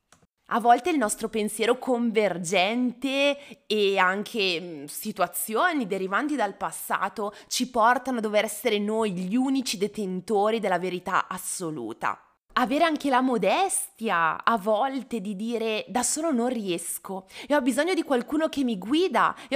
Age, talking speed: 20-39, 140 wpm